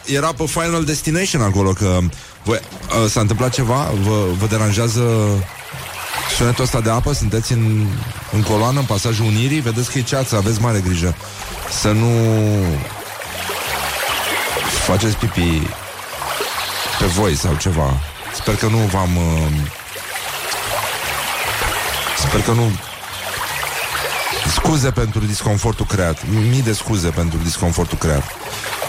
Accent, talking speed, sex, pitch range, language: native, 120 wpm, male, 85-110 Hz, Romanian